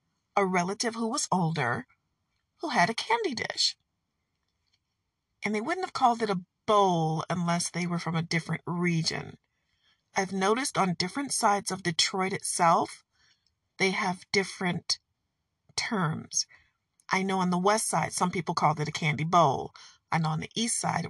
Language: English